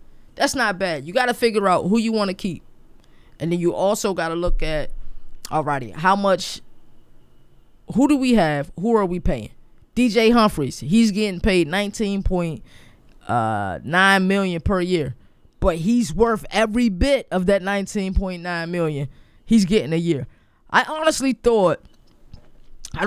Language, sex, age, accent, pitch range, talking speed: English, female, 20-39, American, 175-240 Hz, 155 wpm